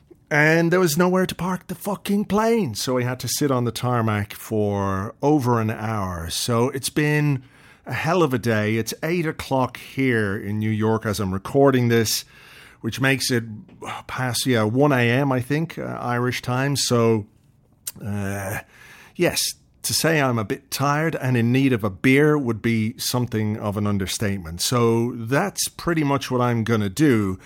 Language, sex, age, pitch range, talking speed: English, male, 40-59, 115-140 Hz, 180 wpm